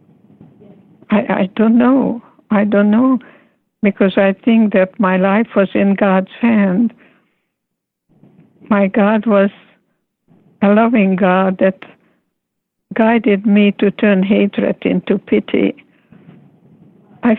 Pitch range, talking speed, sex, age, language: 195-235 Hz, 110 wpm, female, 60-79, English